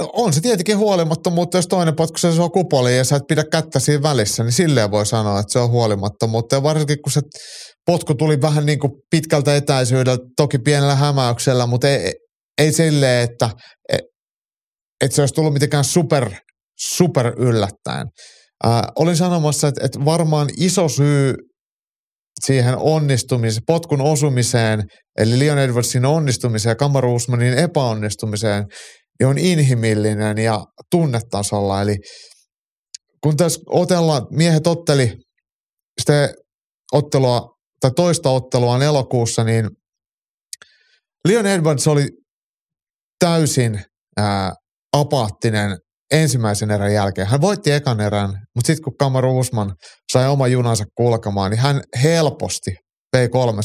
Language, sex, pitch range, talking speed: Finnish, male, 115-155 Hz, 125 wpm